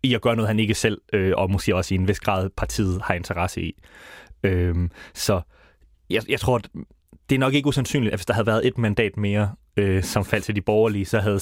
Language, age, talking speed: Danish, 30-49, 240 wpm